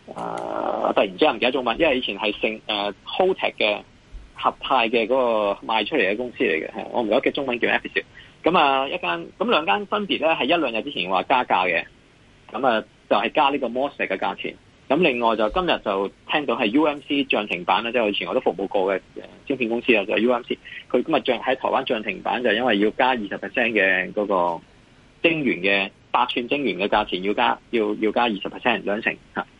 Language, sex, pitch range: Chinese, male, 105-140 Hz